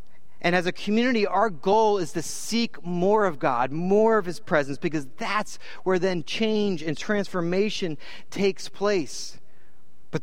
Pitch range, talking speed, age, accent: 165-220 Hz, 155 wpm, 30-49, American